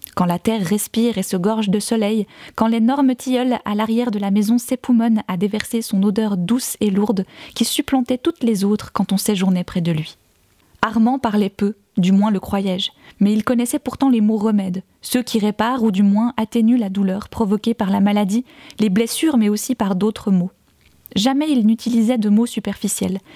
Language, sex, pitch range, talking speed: French, female, 200-240 Hz, 195 wpm